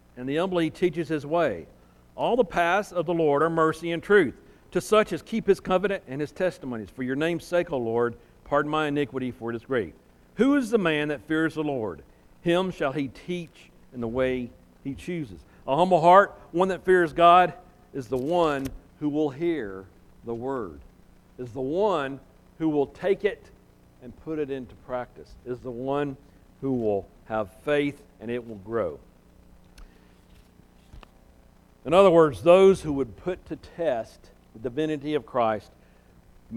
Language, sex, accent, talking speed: English, male, American, 175 wpm